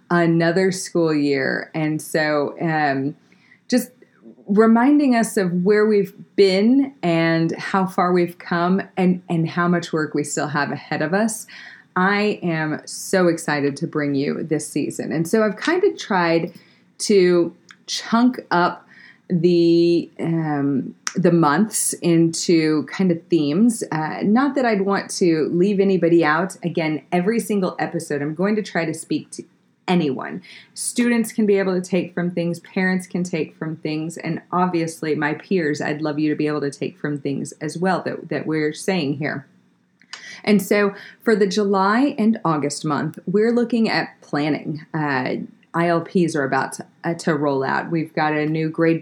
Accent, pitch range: American, 155-195 Hz